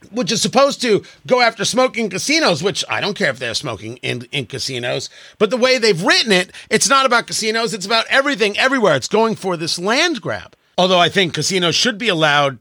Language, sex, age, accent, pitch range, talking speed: English, male, 40-59, American, 170-235 Hz, 215 wpm